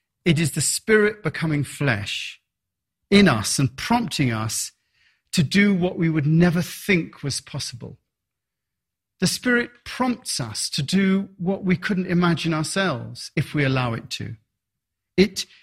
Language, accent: English, British